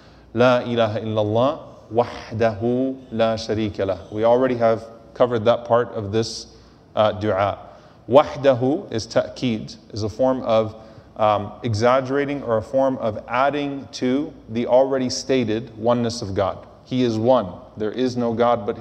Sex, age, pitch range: male, 30-49, 115-140 Hz